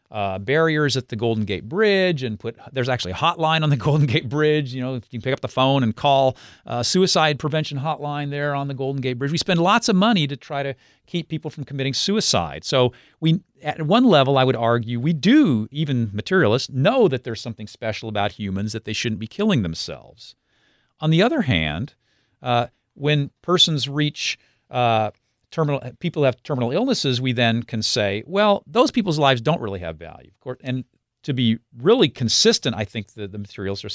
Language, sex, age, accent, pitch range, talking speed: English, male, 40-59, American, 105-145 Hz, 205 wpm